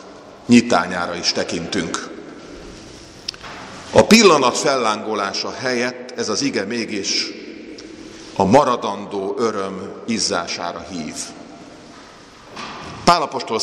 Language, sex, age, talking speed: Hungarian, male, 50-69, 75 wpm